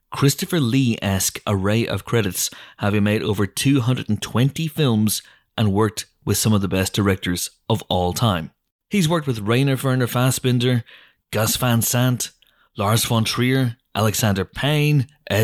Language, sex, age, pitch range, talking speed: English, male, 30-49, 105-140 Hz, 135 wpm